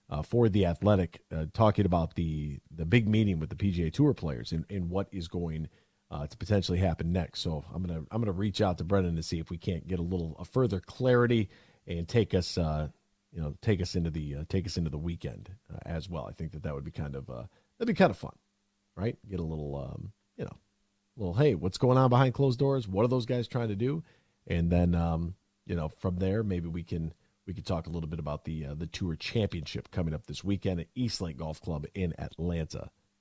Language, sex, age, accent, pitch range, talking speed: English, male, 40-59, American, 85-120 Hz, 245 wpm